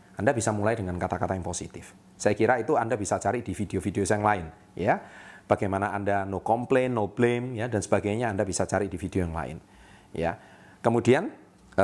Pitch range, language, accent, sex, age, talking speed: 95-120 Hz, Indonesian, native, male, 30-49, 180 wpm